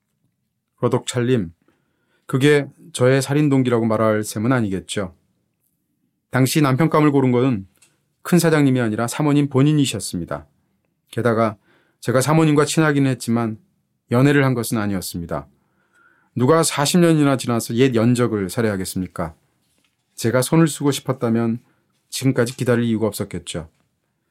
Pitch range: 120-170 Hz